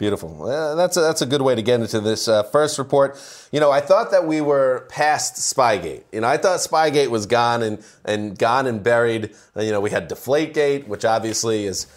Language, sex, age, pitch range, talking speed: English, male, 30-49, 105-140 Hz, 220 wpm